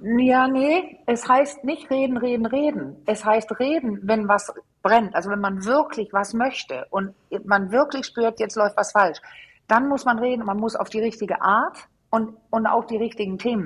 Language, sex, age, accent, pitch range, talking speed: German, female, 50-69, German, 195-245 Hz, 200 wpm